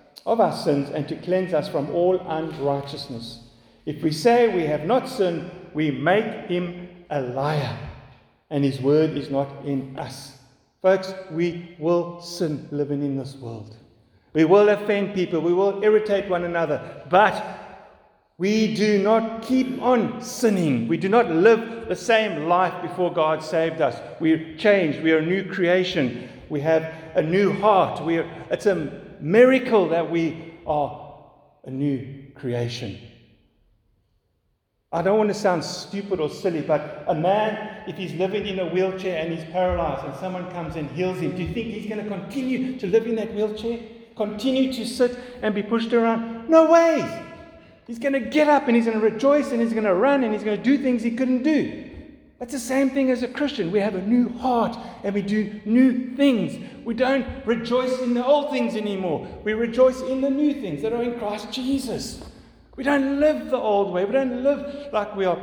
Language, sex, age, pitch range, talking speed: English, male, 50-69, 160-235 Hz, 190 wpm